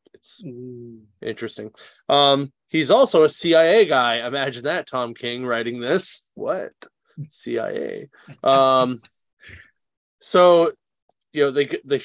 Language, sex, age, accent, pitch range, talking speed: English, male, 30-49, American, 115-135 Hz, 110 wpm